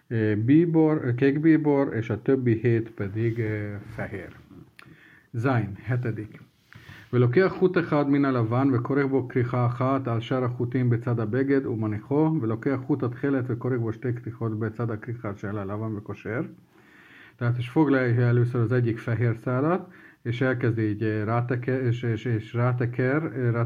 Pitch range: 110-135 Hz